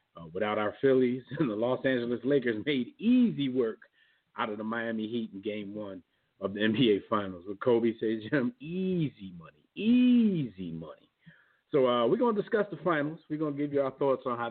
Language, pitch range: English, 120-165 Hz